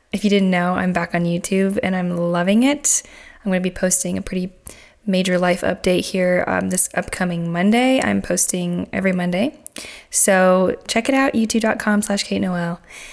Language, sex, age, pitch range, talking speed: English, female, 10-29, 180-215 Hz, 180 wpm